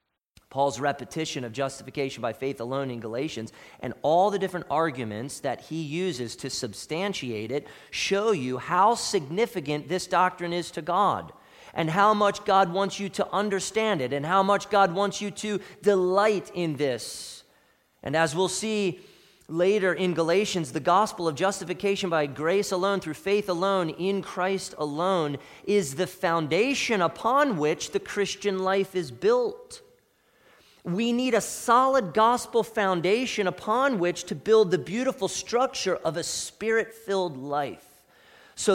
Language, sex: English, male